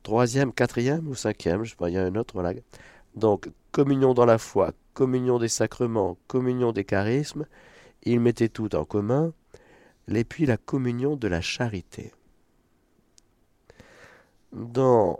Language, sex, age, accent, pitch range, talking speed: French, male, 50-69, French, 95-125 Hz, 145 wpm